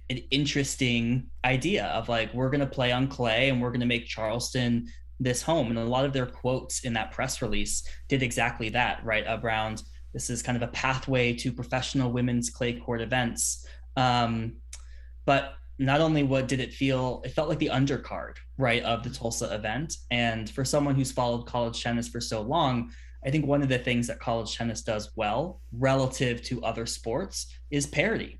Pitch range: 110-130 Hz